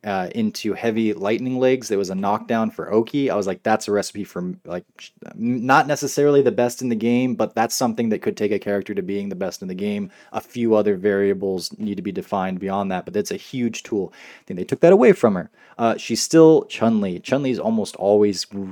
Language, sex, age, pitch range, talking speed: English, male, 20-39, 105-125 Hz, 230 wpm